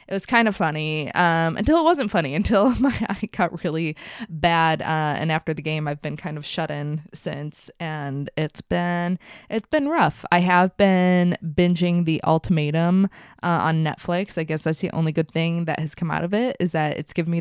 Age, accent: 20-39, American